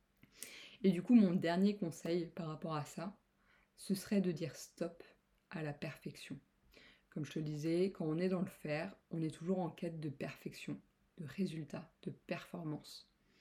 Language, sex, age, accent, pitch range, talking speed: French, female, 20-39, French, 170-210 Hz, 175 wpm